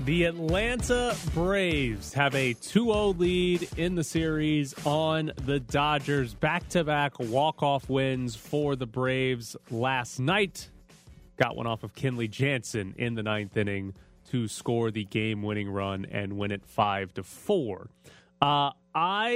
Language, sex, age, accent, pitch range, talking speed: English, male, 30-49, American, 115-150 Hz, 125 wpm